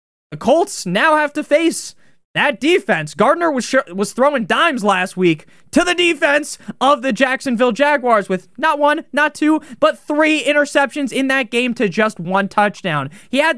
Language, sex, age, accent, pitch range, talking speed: English, male, 20-39, American, 185-260 Hz, 175 wpm